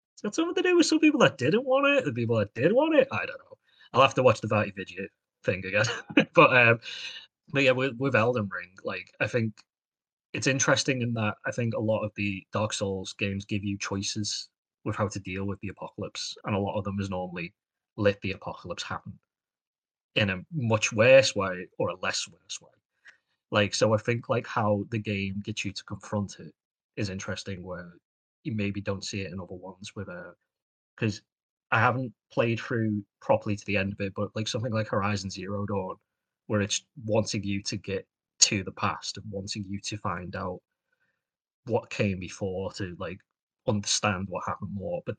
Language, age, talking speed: English, 30-49, 205 wpm